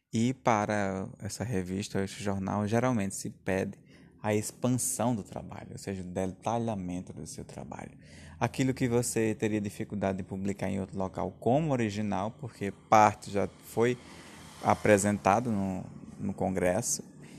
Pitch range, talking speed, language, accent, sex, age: 100-120 Hz, 140 wpm, Portuguese, Brazilian, male, 20-39